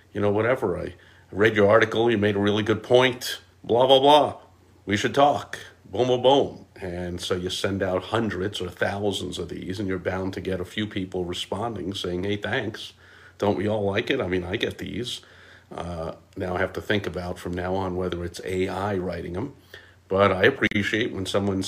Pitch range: 90-110 Hz